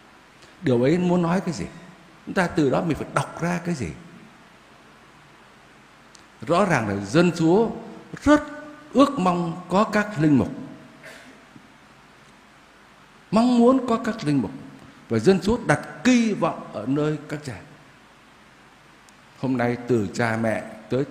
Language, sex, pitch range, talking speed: Vietnamese, male, 140-210 Hz, 140 wpm